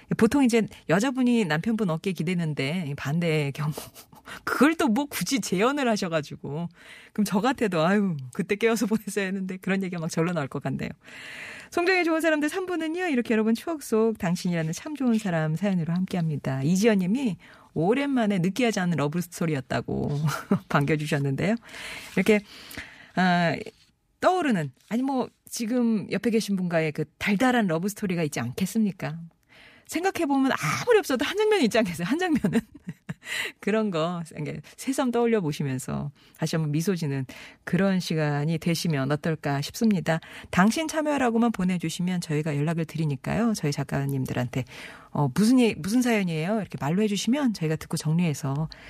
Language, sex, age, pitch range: Korean, female, 40-59, 155-230 Hz